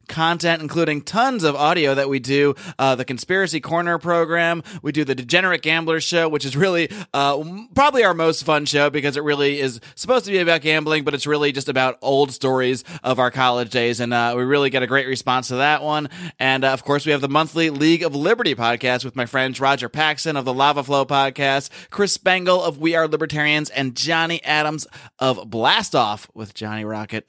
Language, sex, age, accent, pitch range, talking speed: English, male, 20-39, American, 135-175 Hz, 210 wpm